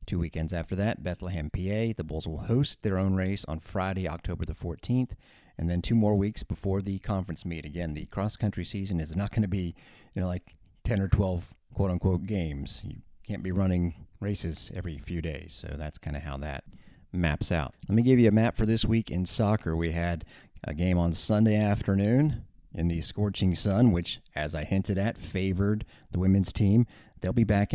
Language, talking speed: English, 205 wpm